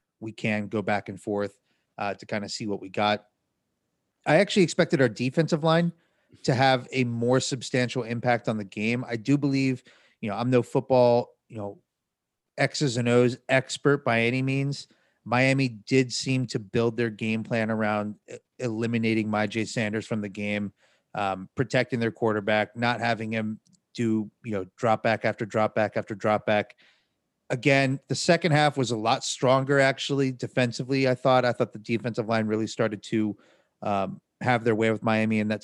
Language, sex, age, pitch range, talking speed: English, male, 30-49, 110-140 Hz, 180 wpm